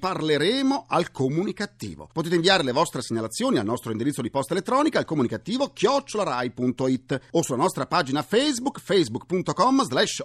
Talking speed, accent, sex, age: 135 wpm, native, male, 40-59